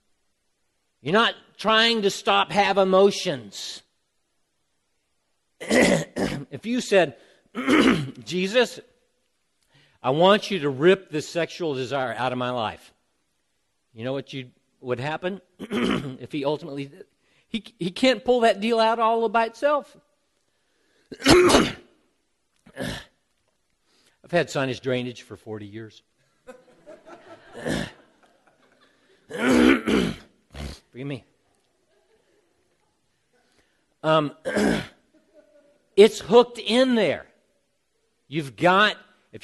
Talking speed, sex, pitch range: 90 wpm, male, 135-215 Hz